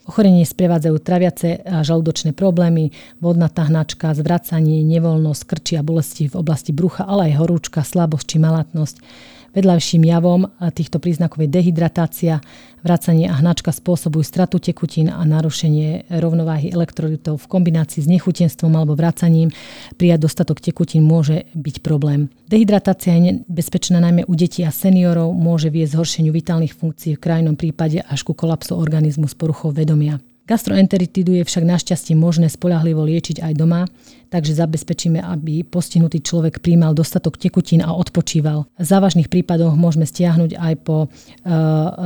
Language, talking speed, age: Slovak, 140 wpm, 40-59